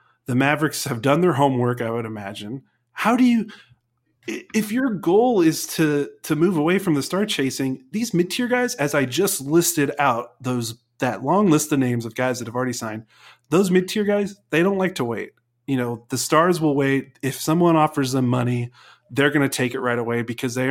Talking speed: 210 wpm